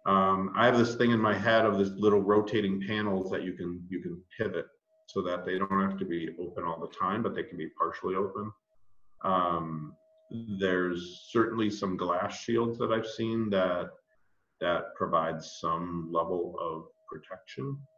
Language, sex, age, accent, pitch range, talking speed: English, male, 50-69, American, 95-140 Hz, 175 wpm